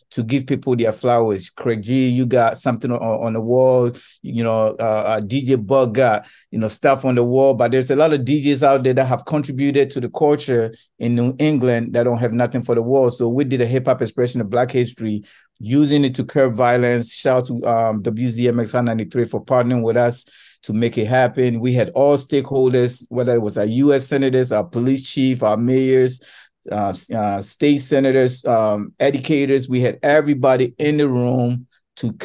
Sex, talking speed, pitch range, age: male, 190 wpm, 115-135 Hz, 50-69